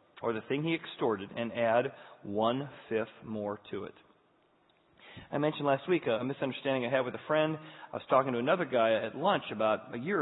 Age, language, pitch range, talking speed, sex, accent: 40-59, English, 115-150 Hz, 195 wpm, male, American